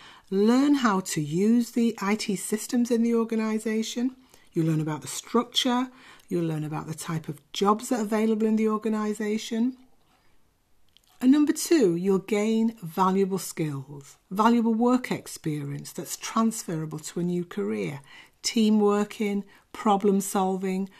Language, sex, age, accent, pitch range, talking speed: English, female, 60-79, British, 170-235 Hz, 130 wpm